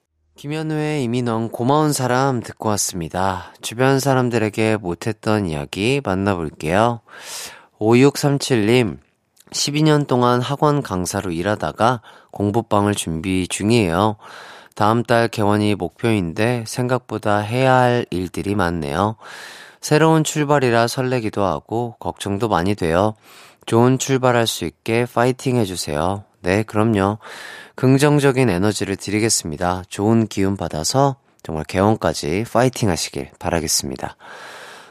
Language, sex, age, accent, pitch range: Korean, male, 30-49, native, 95-125 Hz